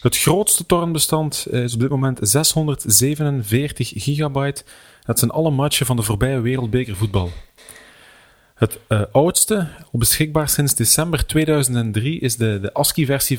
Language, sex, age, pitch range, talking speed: Dutch, male, 30-49, 115-145 Hz, 125 wpm